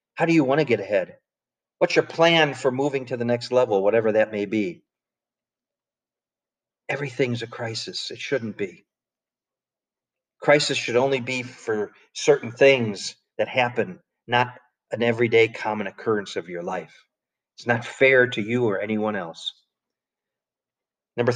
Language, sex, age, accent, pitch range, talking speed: English, male, 40-59, American, 115-135 Hz, 145 wpm